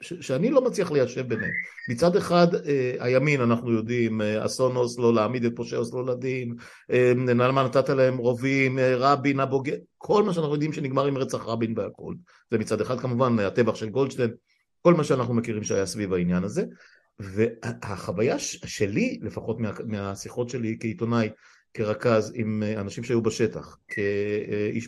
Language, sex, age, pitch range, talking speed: Hebrew, male, 50-69, 115-150 Hz, 175 wpm